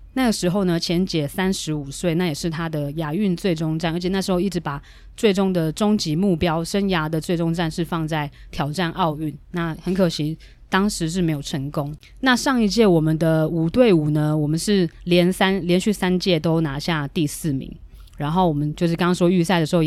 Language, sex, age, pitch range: Chinese, female, 20-39, 155-185 Hz